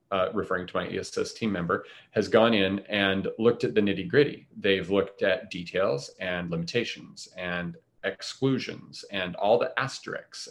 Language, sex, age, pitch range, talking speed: English, male, 30-49, 90-110 Hz, 160 wpm